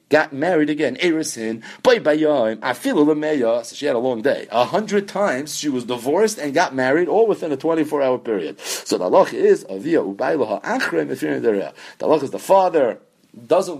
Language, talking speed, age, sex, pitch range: English, 130 wpm, 40-59, male, 135-195 Hz